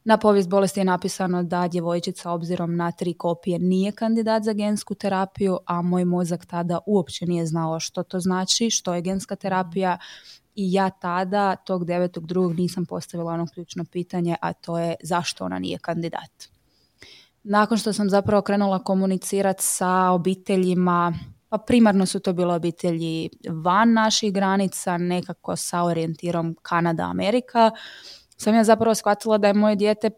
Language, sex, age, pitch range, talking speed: Croatian, female, 20-39, 175-200 Hz, 155 wpm